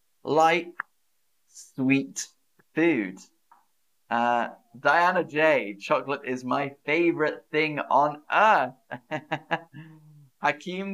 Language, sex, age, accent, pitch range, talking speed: English, male, 30-49, British, 120-175 Hz, 75 wpm